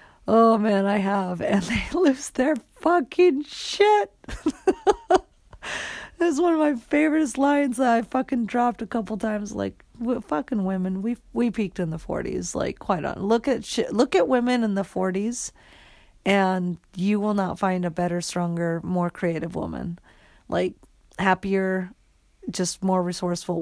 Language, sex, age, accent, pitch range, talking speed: English, female, 40-59, American, 175-235 Hz, 150 wpm